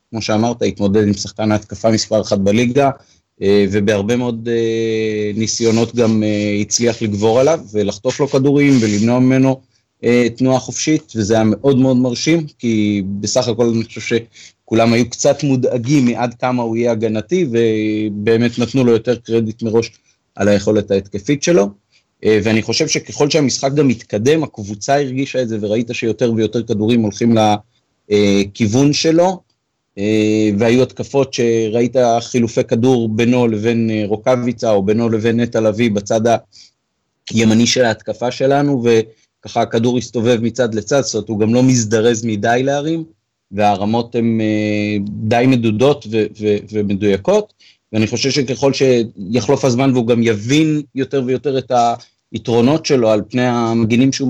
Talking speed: 135 wpm